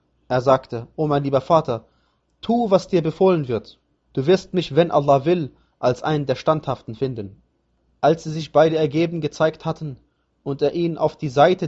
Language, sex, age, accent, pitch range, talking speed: German, male, 30-49, German, 130-155 Hz, 180 wpm